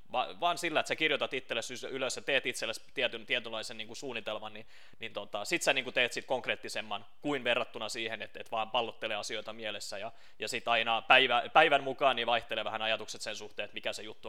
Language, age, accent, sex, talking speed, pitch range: Finnish, 30-49, native, male, 205 wpm, 115-140 Hz